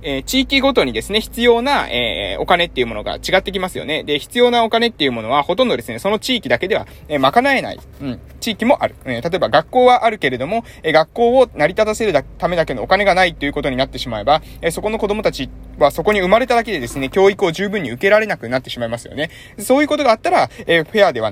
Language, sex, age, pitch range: Japanese, male, 20-39, 145-235 Hz